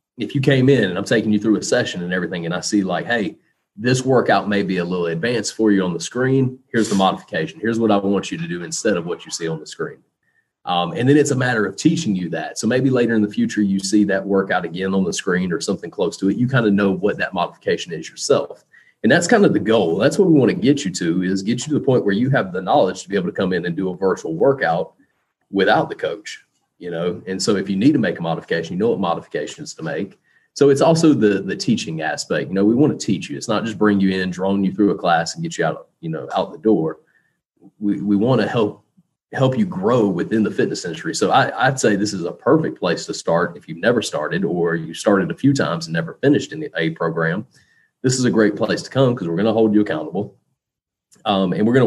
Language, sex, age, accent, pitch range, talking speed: English, male, 30-49, American, 95-130 Hz, 270 wpm